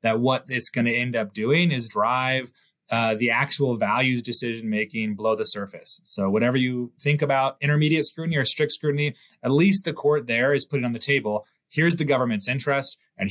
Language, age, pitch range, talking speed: English, 30-49, 110-145 Hz, 200 wpm